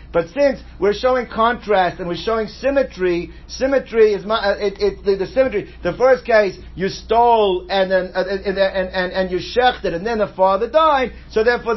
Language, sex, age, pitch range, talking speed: English, male, 60-79, 185-230 Hz, 200 wpm